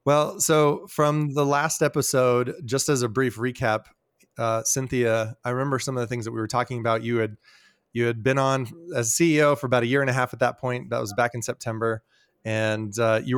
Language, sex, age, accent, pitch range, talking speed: English, male, 20-39, American, 115-140 Hz, 225 wpm